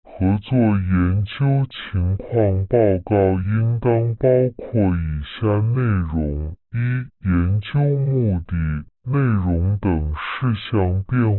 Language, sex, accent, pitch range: Chinese, female, American, 85-115 Hz